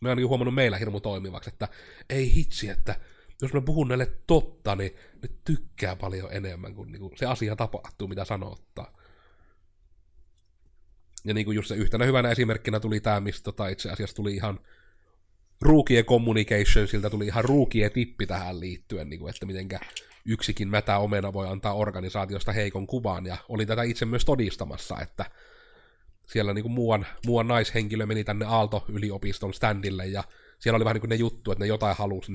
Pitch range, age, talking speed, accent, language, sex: 95-120 Hz, 30-49, 165 wpm, native, Finnish, male